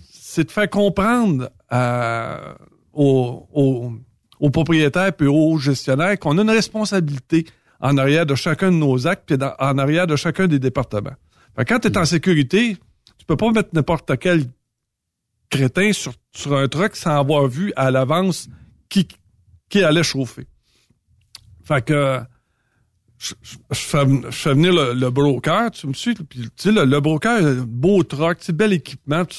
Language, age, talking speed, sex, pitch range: French, 50-69, 170 wpm, male, 130-170 Hz